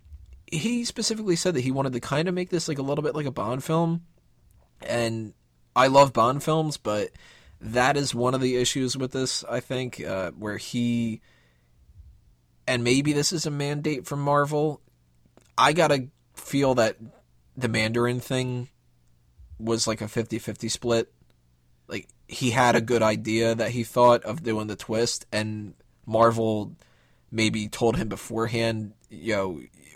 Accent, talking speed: American, 160 wpm